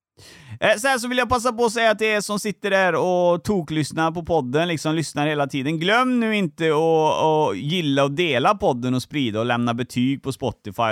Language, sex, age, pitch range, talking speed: Swedish, male, 30-49, 115-165 Hz, 210 wpm